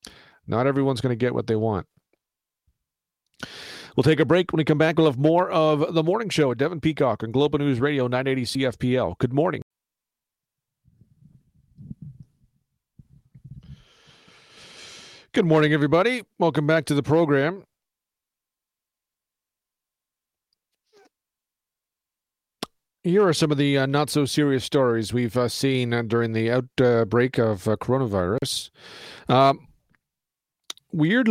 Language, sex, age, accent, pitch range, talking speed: English, male, 40-59, American, 115-145 Hz, 125 wpm